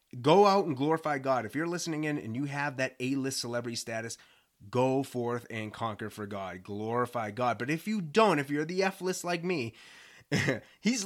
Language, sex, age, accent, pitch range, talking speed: English, male, 30-49, American, 125-175 Hz, 190 wpm